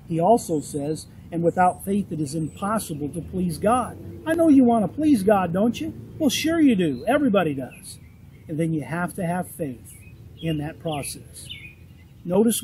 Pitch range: 150-210 Hz